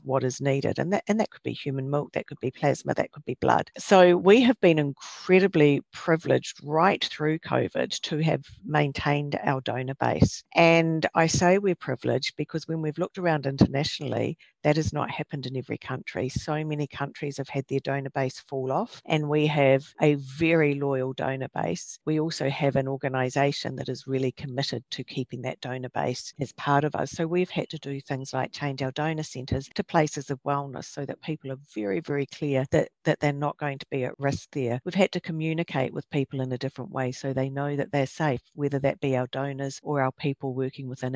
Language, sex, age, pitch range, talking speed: English, female, 50-69, 135-155 Hz, 210 wpm